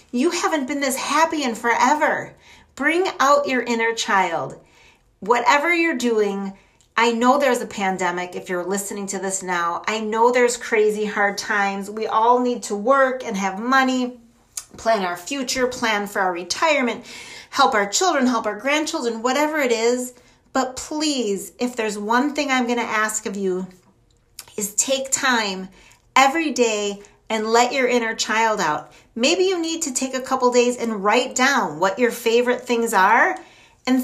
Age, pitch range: 40-59, 205-270 Hz